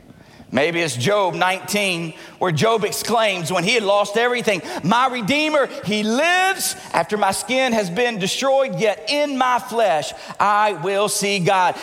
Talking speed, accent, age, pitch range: 150 wpm, American, 40-59, 205-275 Hz